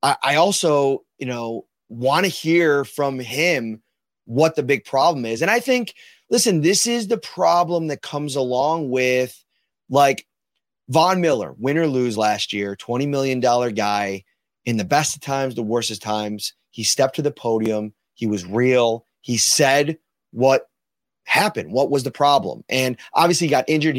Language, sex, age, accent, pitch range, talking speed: English, male, 30-49, American, 120-160 Hz, 170 wpm